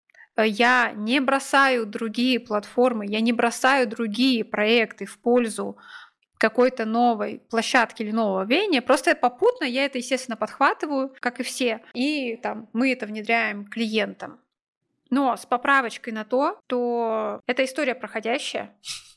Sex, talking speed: female, 130 wpm